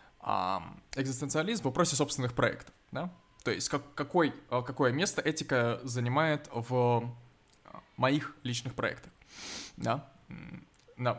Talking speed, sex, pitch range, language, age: 105 wpm, male, 120-145 Hz, Russian, 20-39